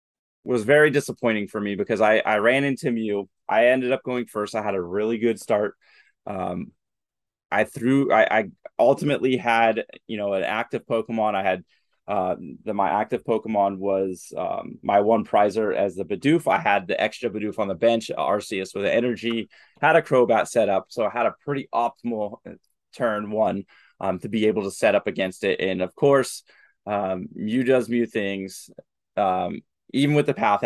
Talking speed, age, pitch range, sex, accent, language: 185 wpm, 20-39, 100-125 Hz, male, American, English